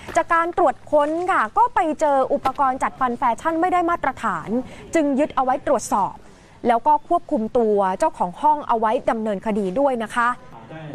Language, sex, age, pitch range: Thai, female, 20-39, 225-290 Hz